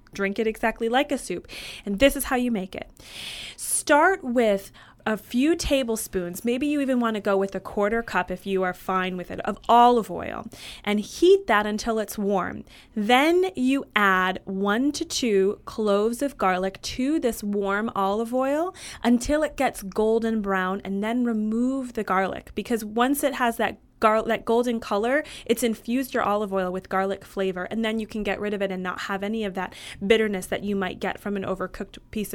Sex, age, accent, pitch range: female, 20-39, American, 195-240 Hz